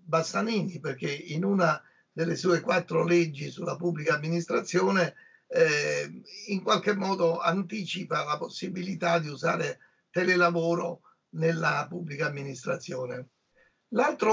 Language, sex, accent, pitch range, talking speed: Italian, male, native, 165-190 Hz, 105 wpm